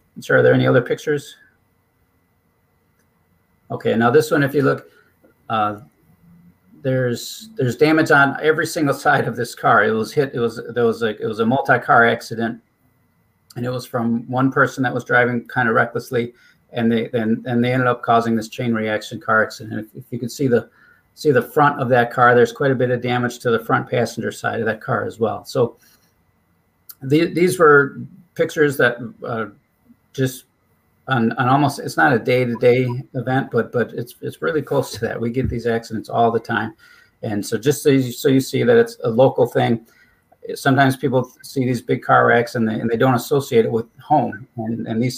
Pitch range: 115-140 Hz